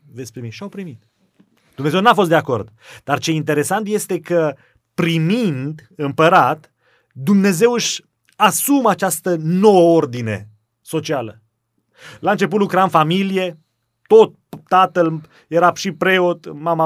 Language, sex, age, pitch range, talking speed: Romanian, male, 30-49, 130-170 Hz, 115 wpm